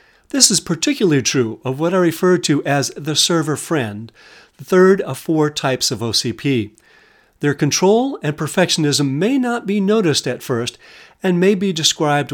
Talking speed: 165 wpm